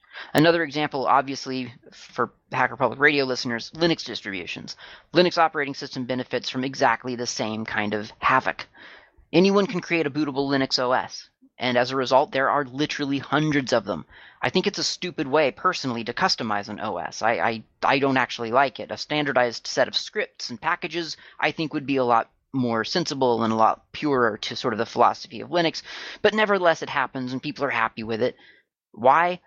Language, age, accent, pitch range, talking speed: English, 30-49, American, 125-165 Hz, 190 wpm